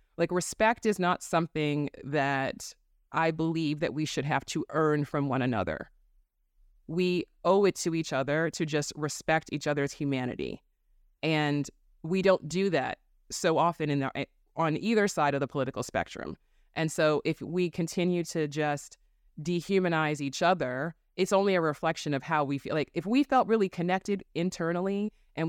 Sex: female